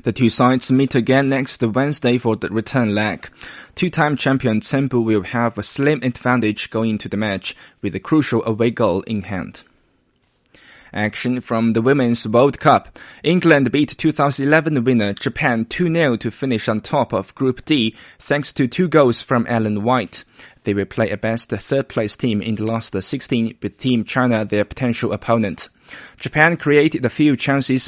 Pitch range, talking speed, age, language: 110-130 Hz, 170 wpm, 20-39, English